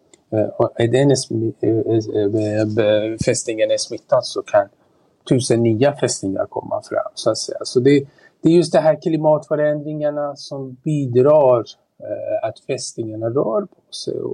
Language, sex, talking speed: Swedish, male, 130 wpm